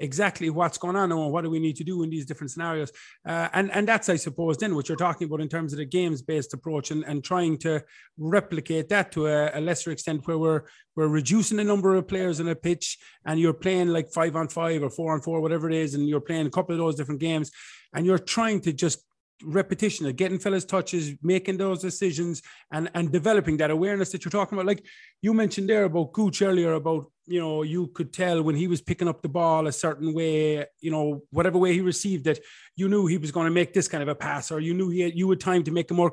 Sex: male